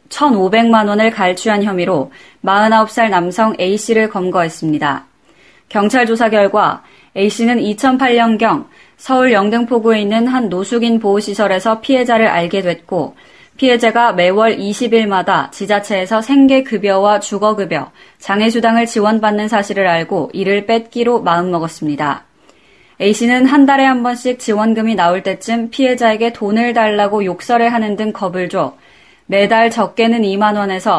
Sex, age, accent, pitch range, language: female, 20-39, native, 195-235 Hz, Korean